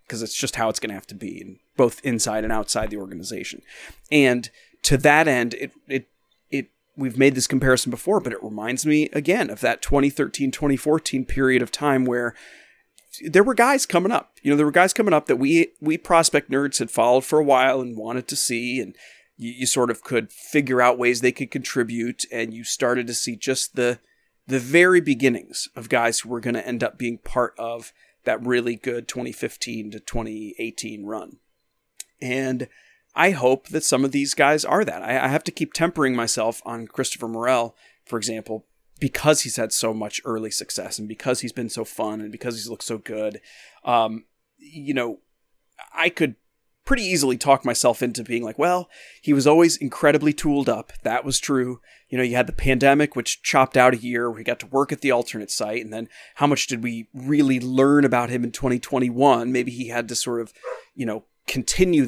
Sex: male